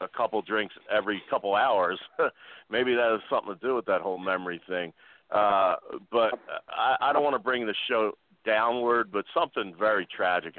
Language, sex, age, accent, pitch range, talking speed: English, male, 40-59, American, 85-95 Hz, 185 wpm